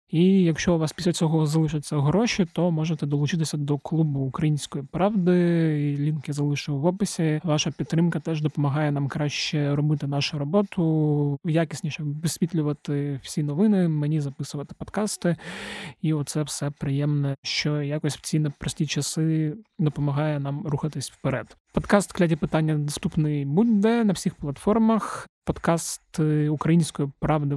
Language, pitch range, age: Ukrainian, 145-170 Hz, 20-39